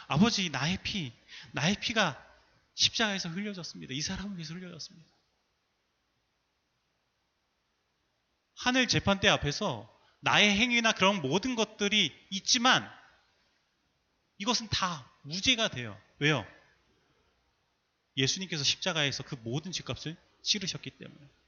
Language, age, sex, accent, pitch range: Korean, 30-49, male, native, 125-190 Hz